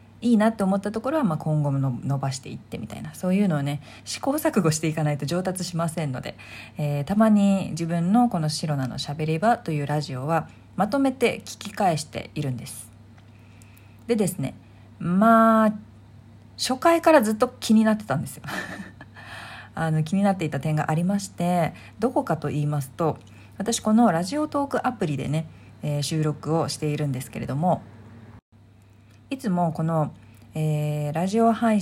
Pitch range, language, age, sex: 135-215 Hz, Japanese, 40-59, female